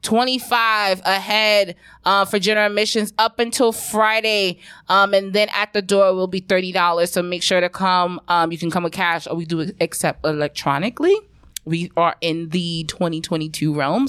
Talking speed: 170 wpm